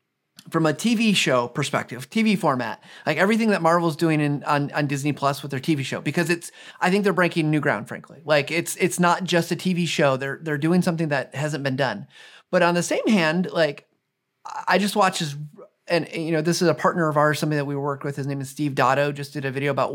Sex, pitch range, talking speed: male, 150-210 Hz, 240 wpm